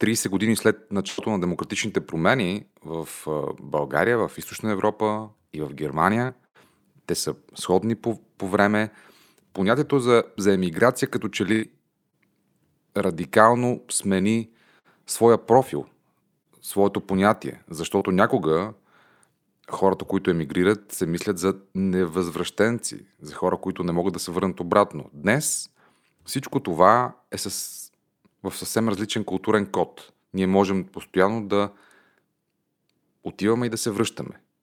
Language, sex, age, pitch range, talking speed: Bulgarian, male, 30-49, 90-110 Hz, 125 wpm